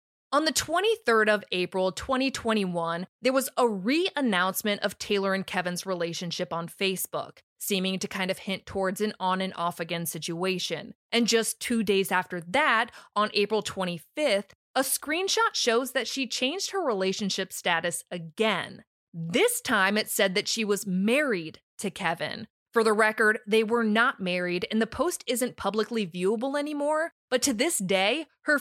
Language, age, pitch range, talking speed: English, 20-39, 185-250 Hz, 155 wpm